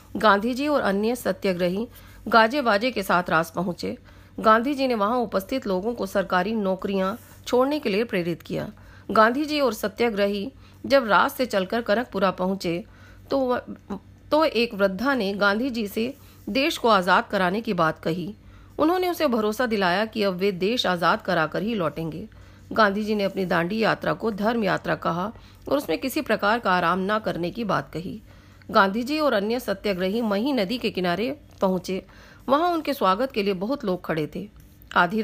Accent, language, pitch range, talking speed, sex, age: native, Hindi, 185-240 Hz, 175 wpm, female, 40-59